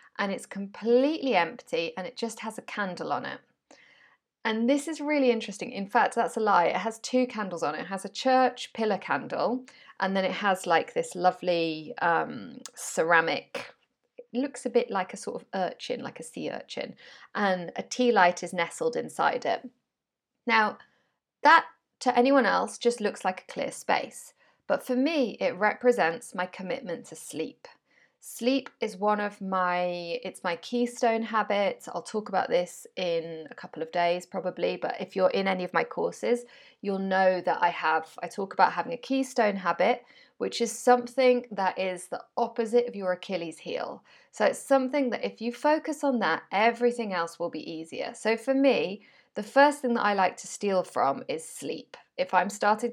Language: English